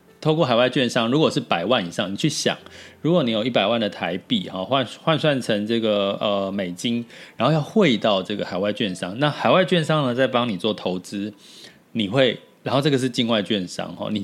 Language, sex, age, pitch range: Chinese, male, 30-49, 105-155 Hz